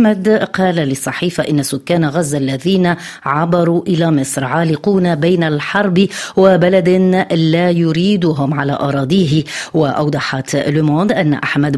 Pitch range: 150-190 Hz